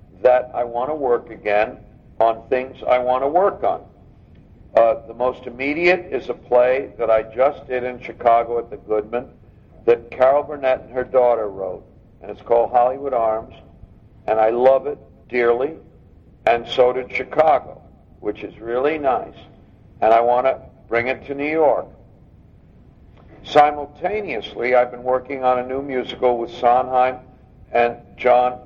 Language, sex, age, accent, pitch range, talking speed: English, male, 60-79, American, 110-125 Hz, 155 wpm